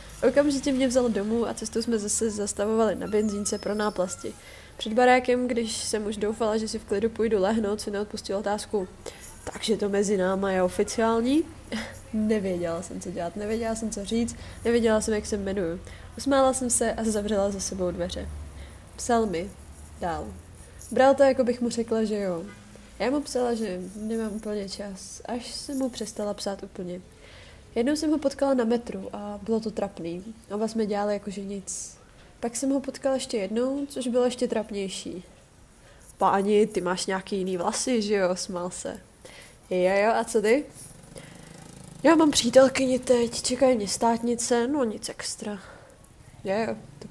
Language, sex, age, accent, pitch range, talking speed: Czech, female, 20-39, native, 200-240 Hz, 165 wpm